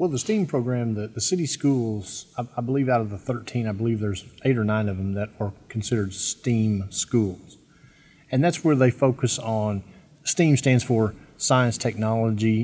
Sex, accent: male, American